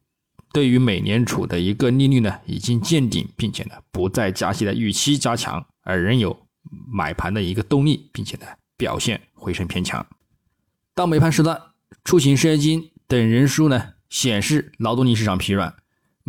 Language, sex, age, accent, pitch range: Chinese, male, 20-39, native, 100-145 Hz